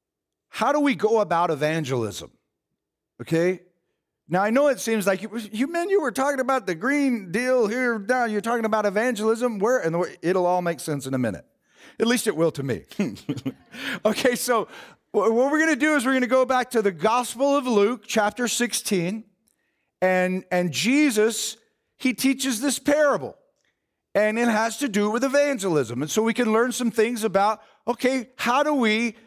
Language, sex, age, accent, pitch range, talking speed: English, male, 40-59, American, 190-250 Hz, 185 wpm